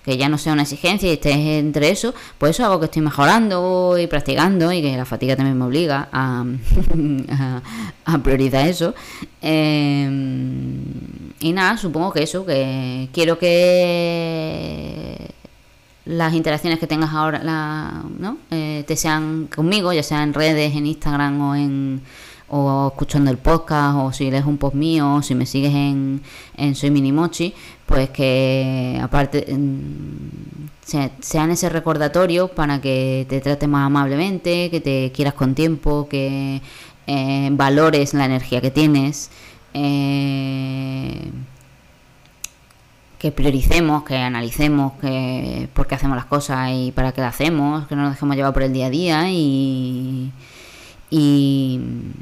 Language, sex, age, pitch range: Spanish, female, 20-39, 135-155 Hz